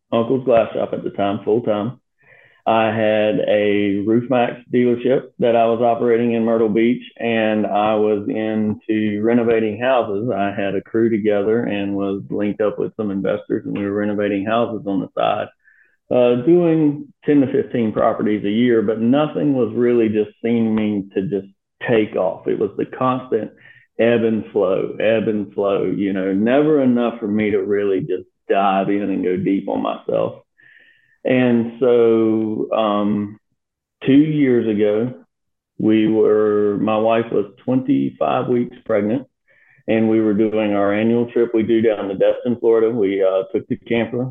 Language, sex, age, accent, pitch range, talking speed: English, male, 40-59, American, 105-120 Hz, 165 wpm